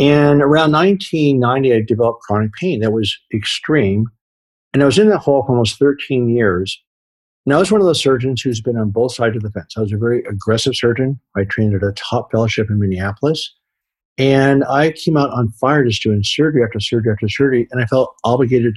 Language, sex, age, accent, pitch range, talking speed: English, male, 50-69, American, 105-140 Hz, 210 wpm